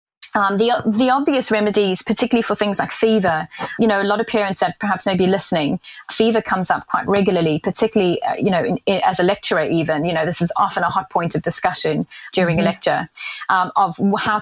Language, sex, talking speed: English, female, 215 wpm